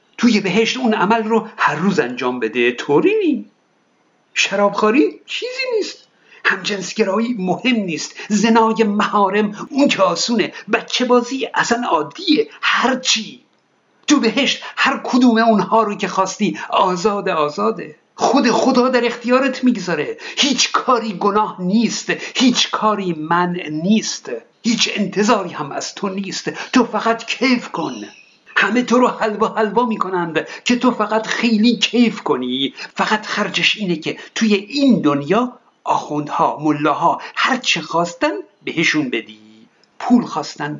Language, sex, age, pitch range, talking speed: Persian, male, 50-69, 185-250 Hz, 125 wpm